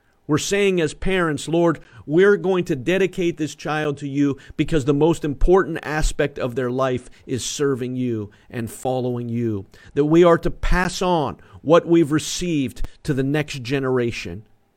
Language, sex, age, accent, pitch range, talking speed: English, male, 40-59, American, 120-155 Hz, 165 wpm